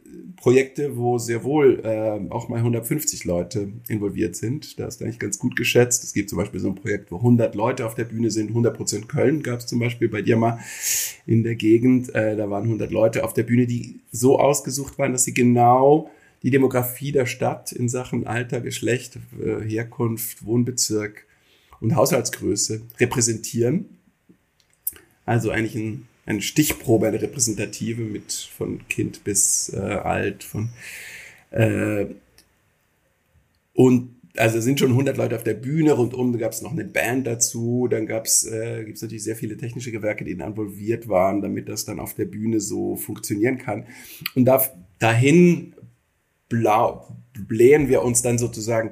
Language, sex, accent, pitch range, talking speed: German, male, German, 110-125 Hz, 165 wpm